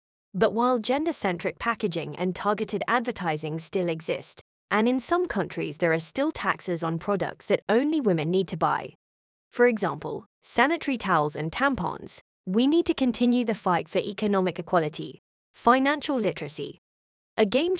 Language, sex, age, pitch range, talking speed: English, female, 20-39, 180-250 Hz, 150 wpm